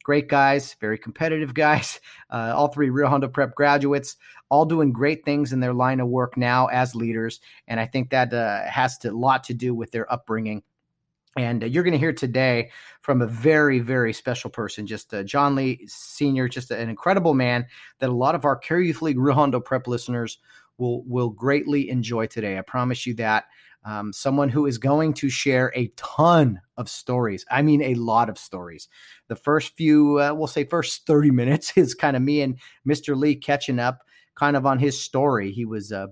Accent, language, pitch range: American, English, 120-145 Hz